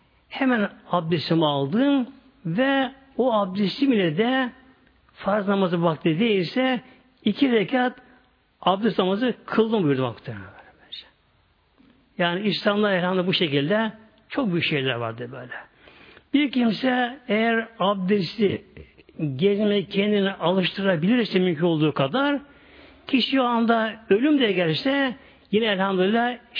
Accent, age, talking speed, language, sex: native, 60-79, 100 wpm, Turkish, male